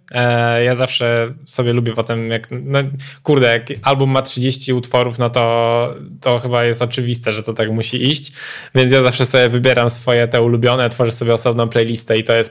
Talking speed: 185 wpm